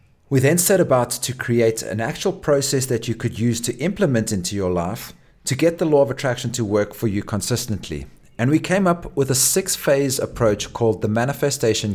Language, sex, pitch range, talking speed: English, male, 110-140 Hz, 200 wpm